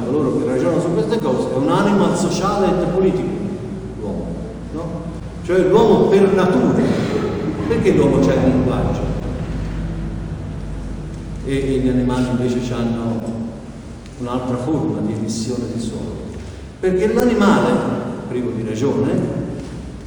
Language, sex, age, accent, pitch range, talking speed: Italian, male, 50-69, native, 120-195 Hz, 115 wpm